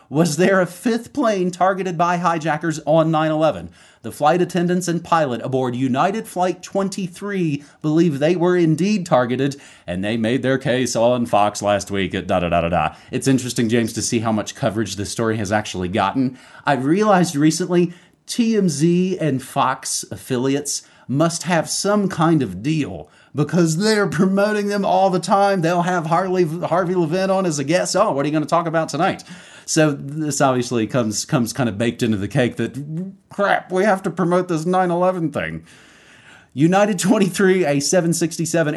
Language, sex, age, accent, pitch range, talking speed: English, male, 30-49, American, 130-180 Hz, 165 wpm